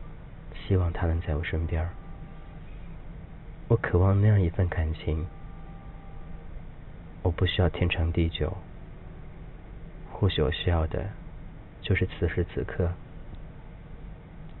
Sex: male